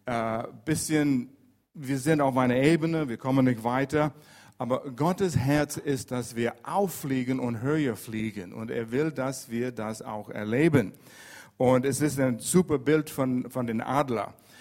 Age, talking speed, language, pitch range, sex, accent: 50-69, 165 wpm, German, 115-150 Hz, male, German